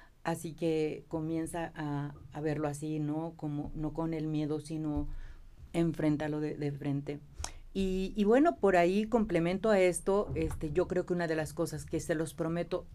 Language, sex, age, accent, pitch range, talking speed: Spanish, female, 40-59, Mexican, 155-175 Hz, 175 wpm